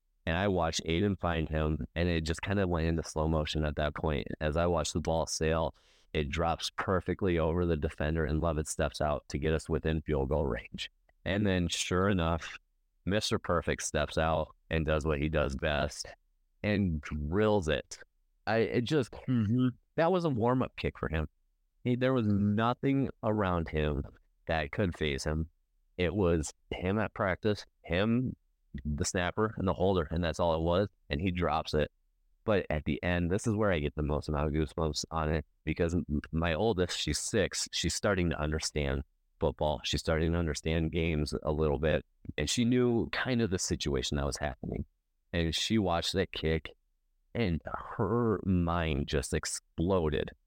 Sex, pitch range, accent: male, 75-95 Hz, American